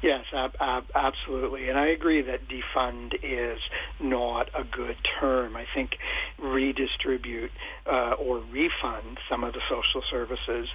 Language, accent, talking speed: English, American, 130 wpm